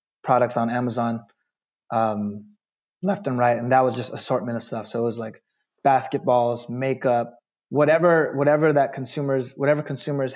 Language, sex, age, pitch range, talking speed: English, male, 20-39, 120-145 Hz, 150 wpm